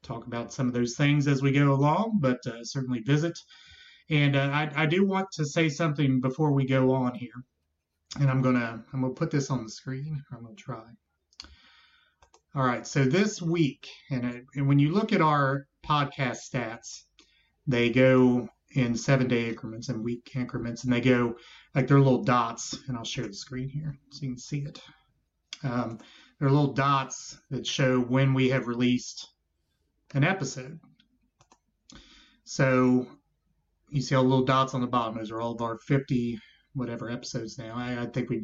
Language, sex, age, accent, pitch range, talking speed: English, male, 30-49, American, 125-150 Hz, 185 wpm